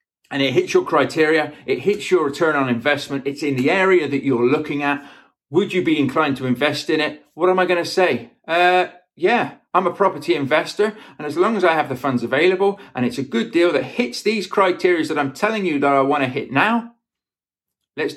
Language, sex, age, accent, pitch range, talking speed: English, male, 40-59, British, 145-215 Hz, 225 wpm